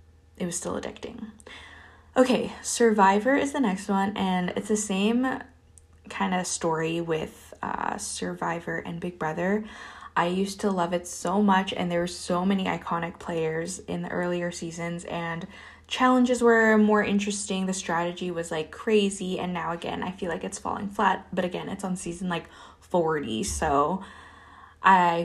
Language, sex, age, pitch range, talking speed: English, female, 20-39, 170-215 Hz, 165 wpm